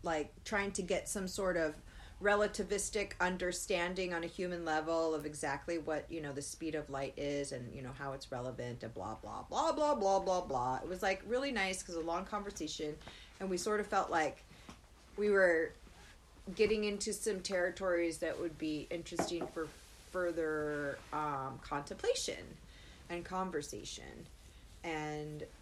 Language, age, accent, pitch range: English, 30-49, American, 145-185 Hz